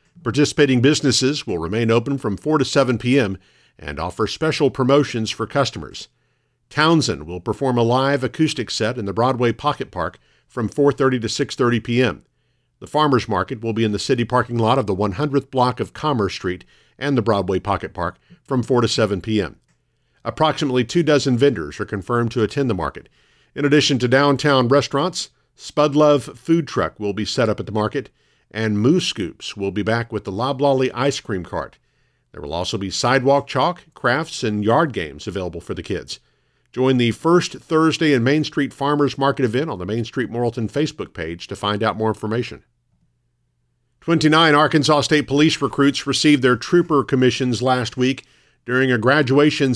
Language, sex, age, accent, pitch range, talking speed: English, male, 50-69, American, 110-145 Hz, 180 wpm